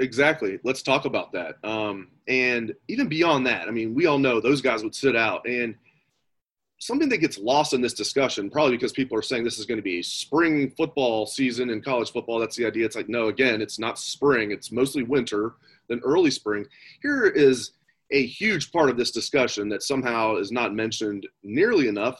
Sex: male